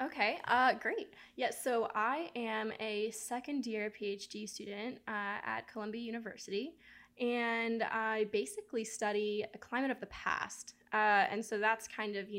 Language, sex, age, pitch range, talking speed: English, female, 10-29, 205-230 Hz, 155 wpm